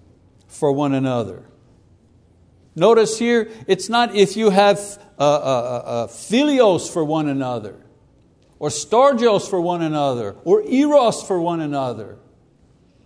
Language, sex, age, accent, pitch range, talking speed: English, male, 60-79, American, 145-210 Hz, 130 wpm